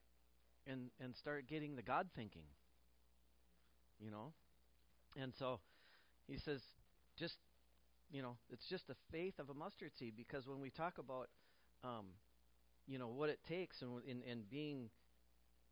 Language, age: English, 40-59